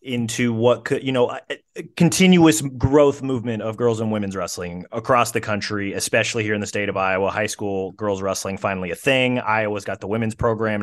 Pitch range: 95-120 Hz